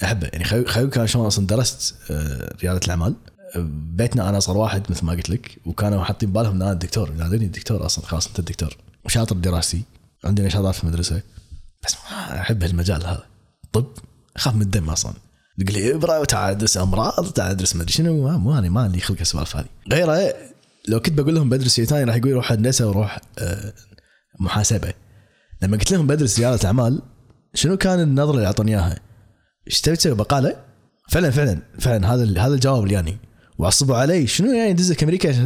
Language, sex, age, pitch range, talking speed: English, male, 20-39, 95-130 Hz, 120 wpm